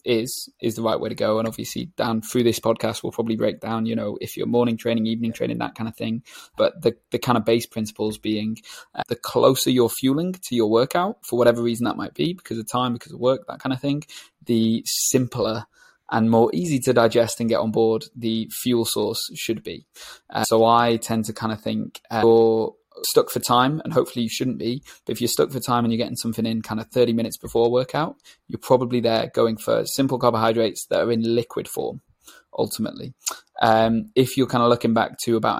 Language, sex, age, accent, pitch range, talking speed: English, male, 20-39, British, 115-120 Hz, 225 wpm